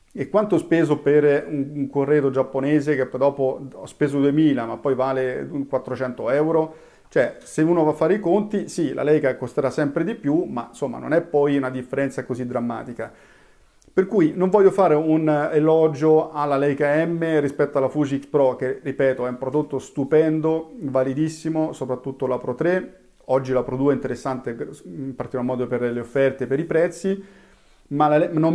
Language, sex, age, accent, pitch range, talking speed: Italian, male, 40-59, native, 135-160 Hz, 185 wpm